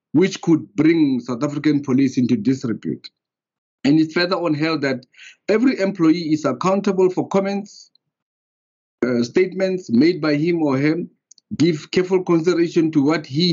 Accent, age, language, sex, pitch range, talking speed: South African, 50-69, English, male, 135-170 Hz, 145 wpm